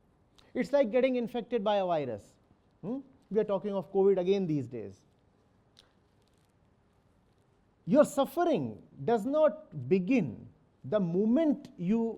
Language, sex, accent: English, male, Indian